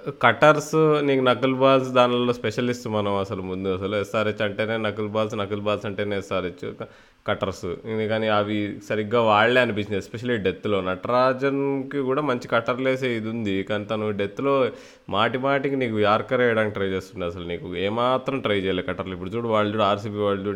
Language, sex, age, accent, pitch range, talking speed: Telugu, male, 20-39, native, 95-115 Hz, 160 wpm